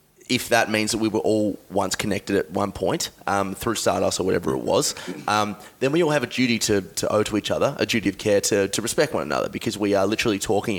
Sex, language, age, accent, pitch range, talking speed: male, English, 20-39, Australian, 100-115 Hz, 255 wpm